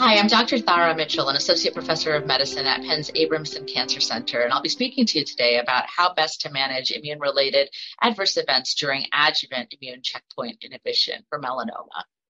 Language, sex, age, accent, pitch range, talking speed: English, female, 30-49, American, 145-225 Hz, 180 wpm